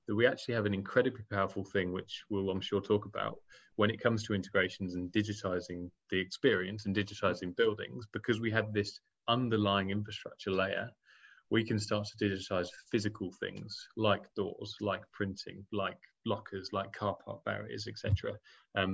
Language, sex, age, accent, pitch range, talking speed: English, male, 20-39, British, 95-110 Hz, 160 wpm